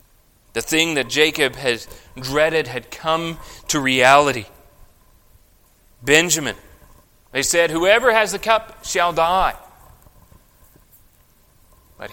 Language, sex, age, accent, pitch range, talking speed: English, male, 30-49, American, 100-130 Hz, 100 wpm